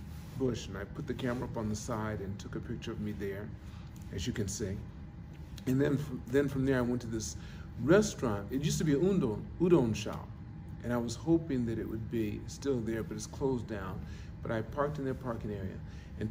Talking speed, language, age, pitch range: 230 wpm, English, 50-69, 100-130 Hz